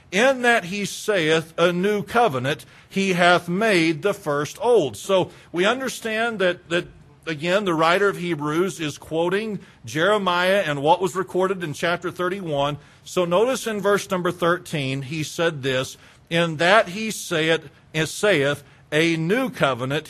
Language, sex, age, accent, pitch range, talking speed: English, male, 50-69, American, 140-190 Hz, 145 wpm